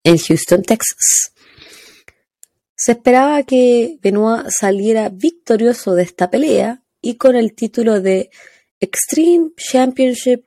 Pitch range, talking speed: 190-265 Hz, 110 wpm